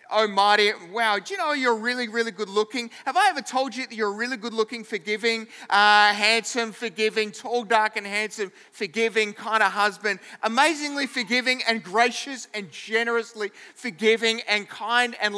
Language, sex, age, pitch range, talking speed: English, male, 30-49, 230-285 Hz, 170 wpm